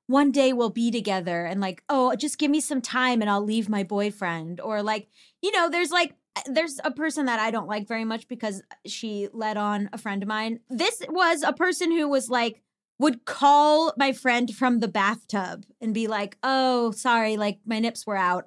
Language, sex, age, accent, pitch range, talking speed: English, female, 20-39, American, 215-280 Hz, 210 wpm